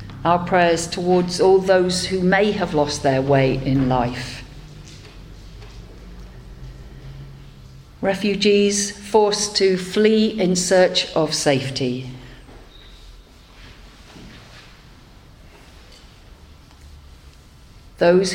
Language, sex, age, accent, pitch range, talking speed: English, female, 50-69, British, 125-180 Hz, 70 wpm